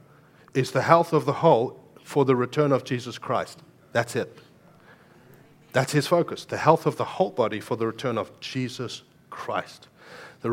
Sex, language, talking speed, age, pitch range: male, English, 170 wpm, 40-59, 120-145 Hz